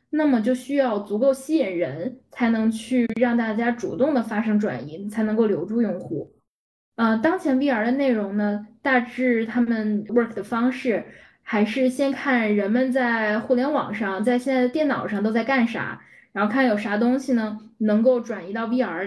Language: Chinese